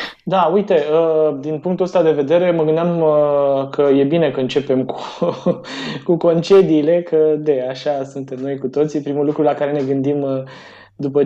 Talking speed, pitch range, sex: 165 wpm, 140-165 Hz, male